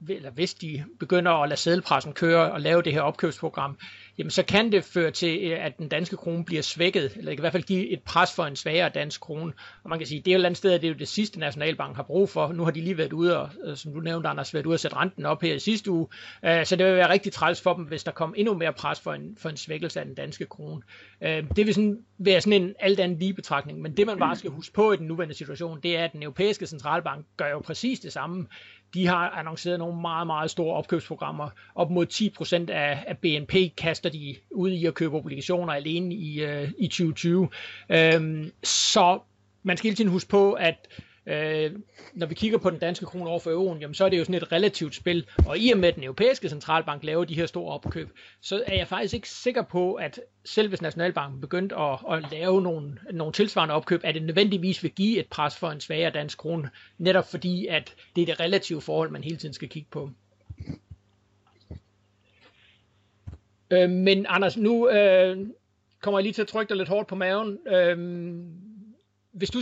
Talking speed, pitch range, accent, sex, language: 225 wpm, 155-185 Hz, native, male, Danish